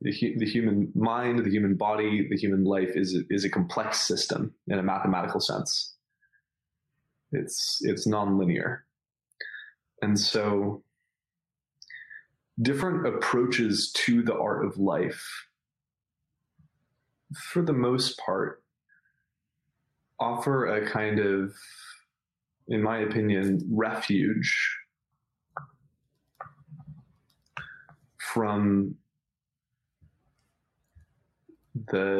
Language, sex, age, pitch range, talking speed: English, male, 20-39, 100-135 Hz, 80 wpm